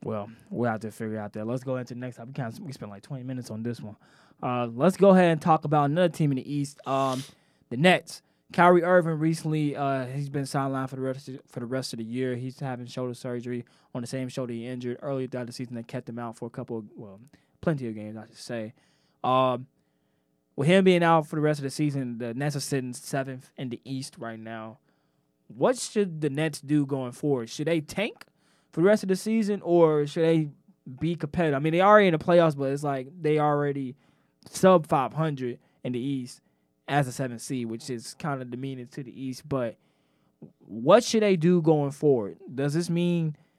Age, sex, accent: 20-39, male, American